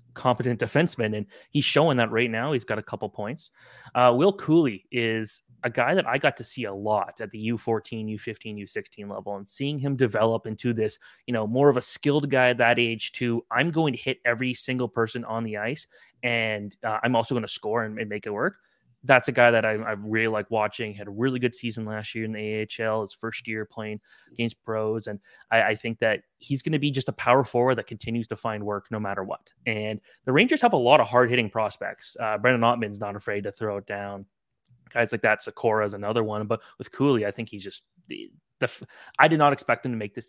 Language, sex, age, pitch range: English, male, 20-39, 110-125 Hz